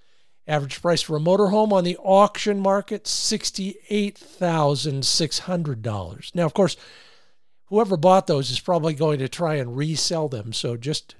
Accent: American